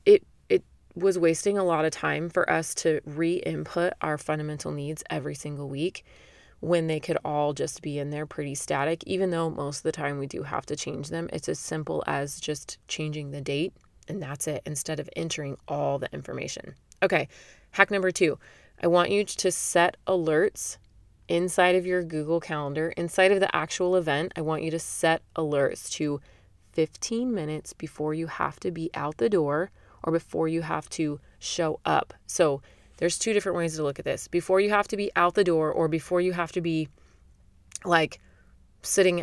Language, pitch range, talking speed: English, 145-180 Hz, 190 wpm